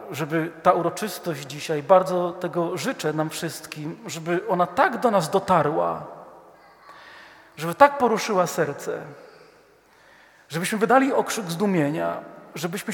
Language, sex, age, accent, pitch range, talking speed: Polish, male, 40-59, native, 165-235 Hz, 110 wpm